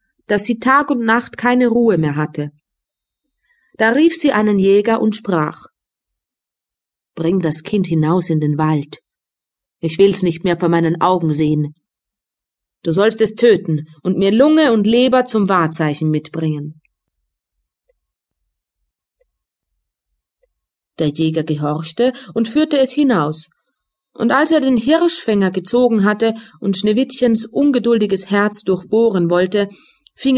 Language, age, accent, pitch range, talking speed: German, 30-49, German, 165-250 Hz, 125 wpm